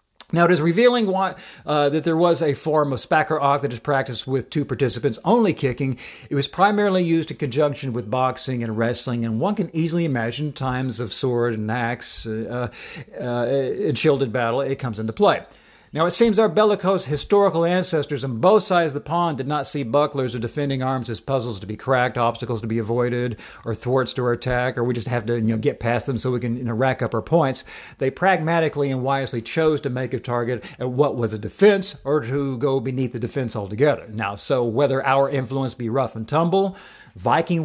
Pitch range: 120-165 Hz